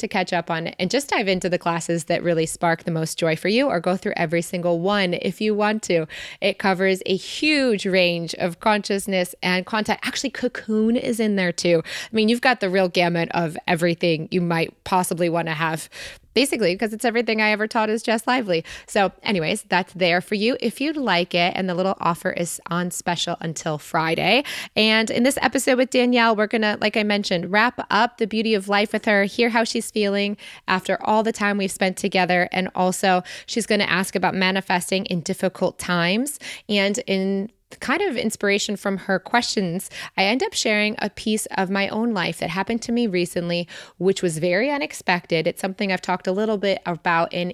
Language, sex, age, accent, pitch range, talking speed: English, female, 20-39, American, 180-235 Hz, 205 wpm